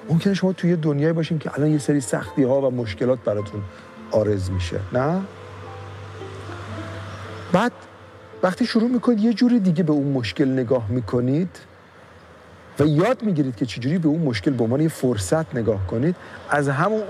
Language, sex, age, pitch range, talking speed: Persian, male, 50-69, 120-195 Hz, 155 wpm